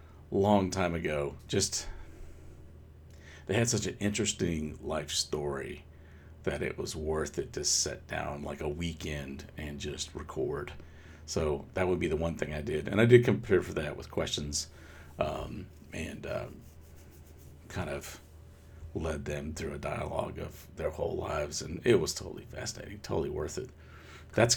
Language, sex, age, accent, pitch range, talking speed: English, male, 50-69, American, 75-90 Hz, 160 wpm